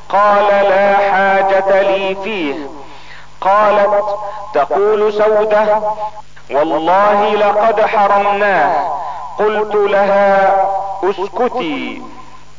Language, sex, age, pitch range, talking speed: Arabic, male, 40-59, 195-210 Hz, 65 wpm